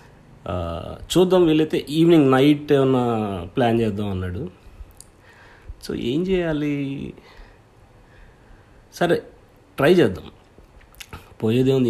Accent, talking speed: native, 75 wpm